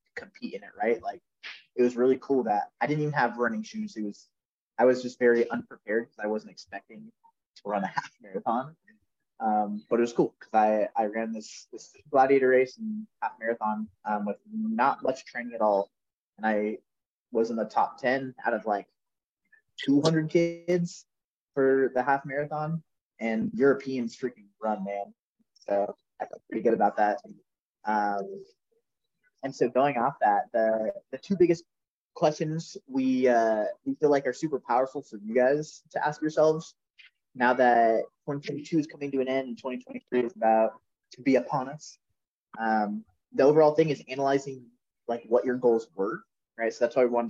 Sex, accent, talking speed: male, American, 180 wpm